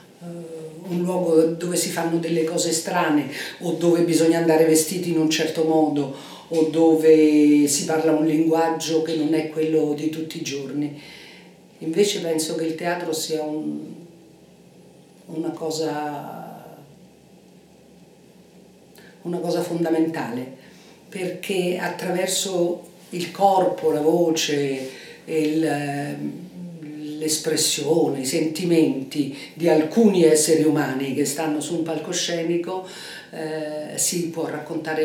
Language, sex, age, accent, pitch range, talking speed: Italian, female, 50-69, native, 155-175 Hz, 115 wpm